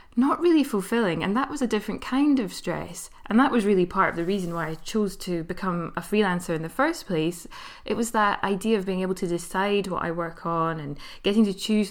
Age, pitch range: 20-39, 180-230 Hz